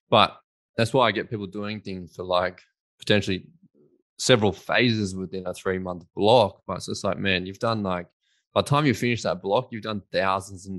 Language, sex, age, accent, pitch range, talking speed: English, male, 20-39, Australian, 90-100 Hz, 200 wpm